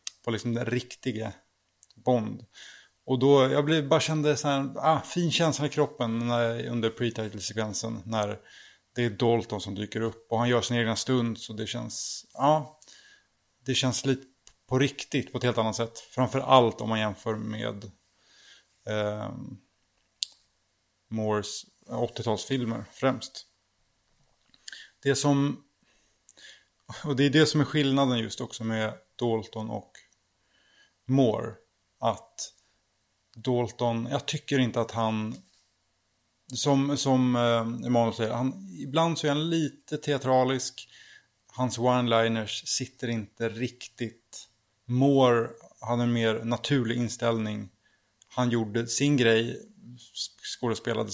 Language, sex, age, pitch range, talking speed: Swedish, male, 20-39, 110-135 Hz, 130 wpm